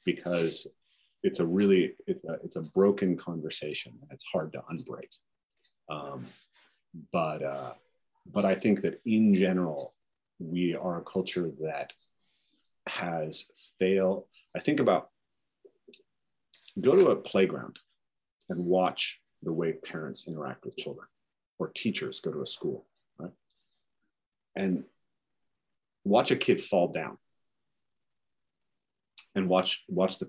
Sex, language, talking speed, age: male, English, 125 wpm, 40-59